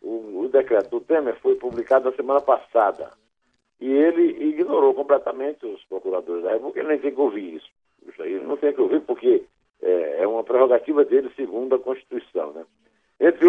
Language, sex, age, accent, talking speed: Portuguese, male, 60-79, Brazilian, 170 wpm